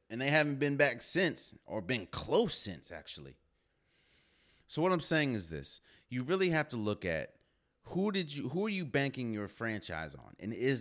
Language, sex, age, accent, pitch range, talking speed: English, male, 30-49, American, 85-130 Hz, 195 wpm